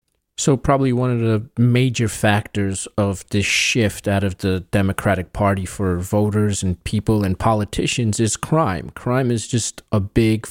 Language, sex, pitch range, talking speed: English, male, 100-120 Hz, 160 wpm